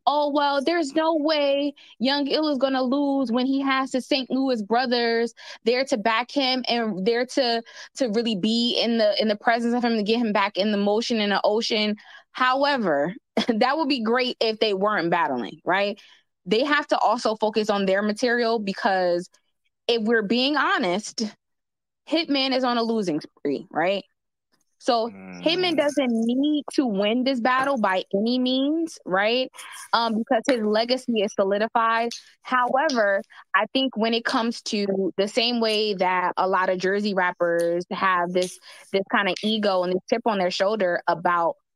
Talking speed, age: 175 wpm, 20-39